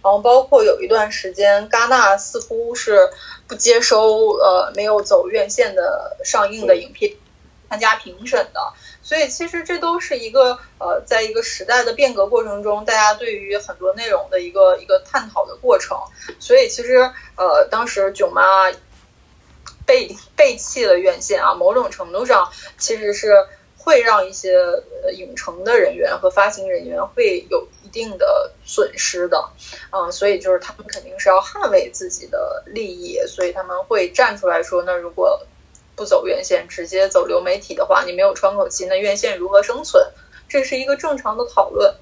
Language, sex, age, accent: Chinese, female, 20-39, native